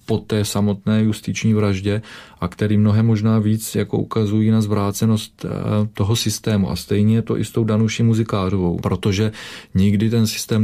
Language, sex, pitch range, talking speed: Czech, male, 100-105 Hz, 165 wpm